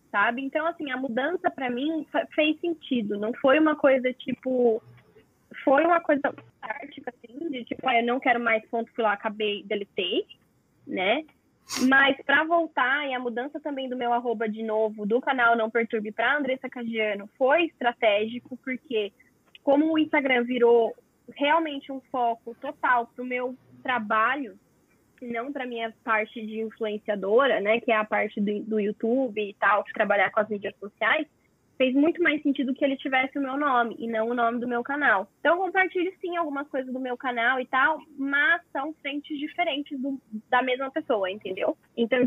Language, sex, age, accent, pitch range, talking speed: Portuguese, female, 10-29, Brazilian, 230-280 Hz, 175 wpm